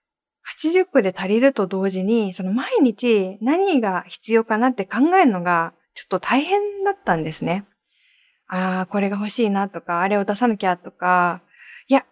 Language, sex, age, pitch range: Japanese, female, 20-39, 185-285 Hz